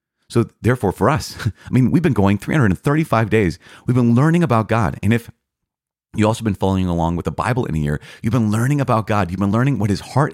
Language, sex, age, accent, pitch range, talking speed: English, male, 30-49, American, 85-120 Hz, 230 wpm